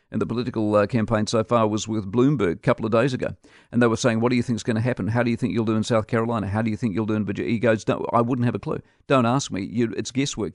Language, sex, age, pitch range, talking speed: English, male, 50-69, 115-135 Hz, 320 wpm